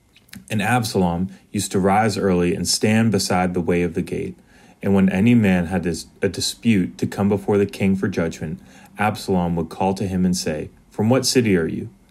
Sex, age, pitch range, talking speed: male, 30-49, 90-105 Hz, 200 wpm